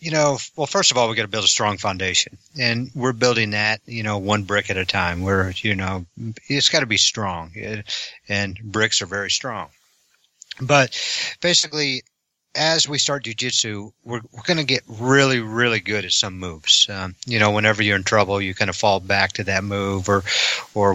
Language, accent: English, American